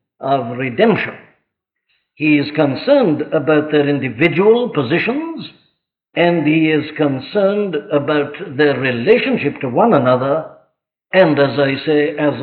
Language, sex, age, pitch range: English, male, 60-79, 140-185 Hz